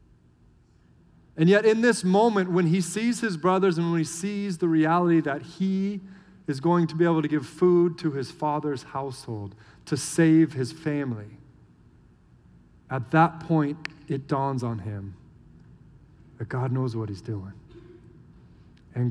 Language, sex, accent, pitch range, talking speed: English, male, American, 120-165 Hz, 150 wpm